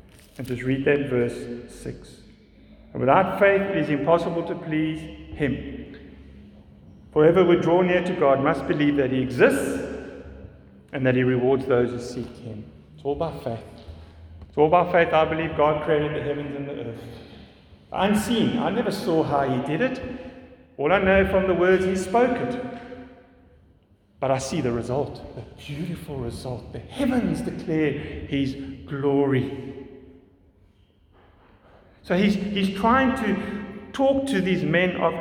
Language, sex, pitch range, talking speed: English, male, 135-220 Hz, 155 wpm